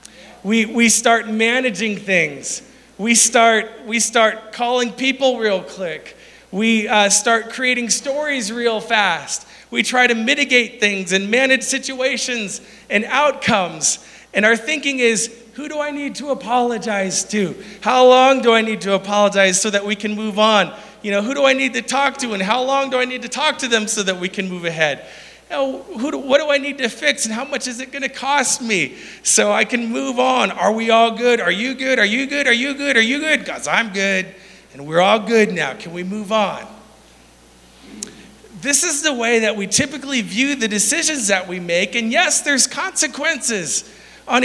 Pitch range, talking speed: 210-265 Hz, 195 wpm